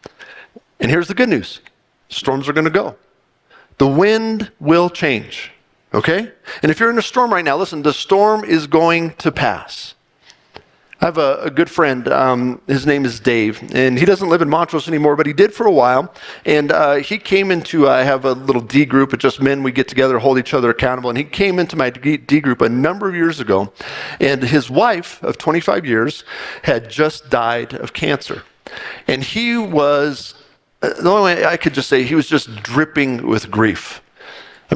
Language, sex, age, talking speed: English, male, 50-69, 200 wpm